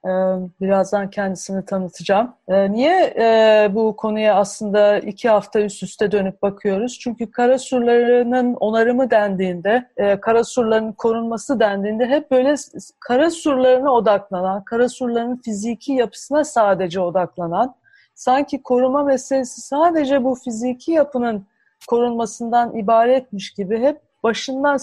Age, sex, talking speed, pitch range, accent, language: 40-59, female, 105 wpm, 210-255 Hz, native, Turkish